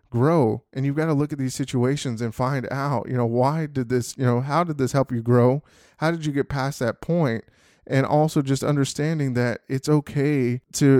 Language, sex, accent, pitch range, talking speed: English, male, American, 130-150 Hz, 220 wpm